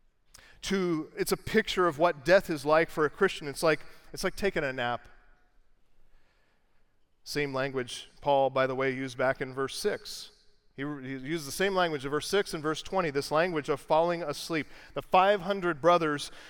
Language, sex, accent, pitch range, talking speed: English, male, American, 145-190 Hz, 180 wpm